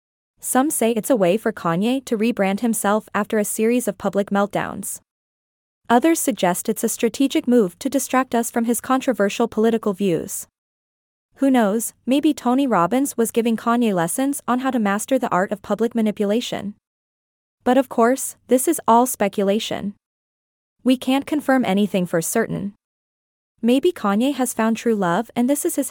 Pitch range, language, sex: 200-250 Hz, English, female